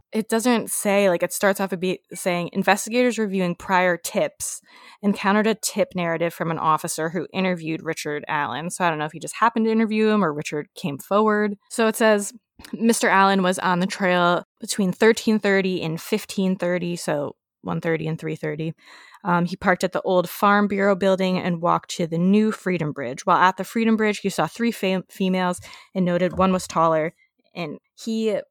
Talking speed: 185 wpm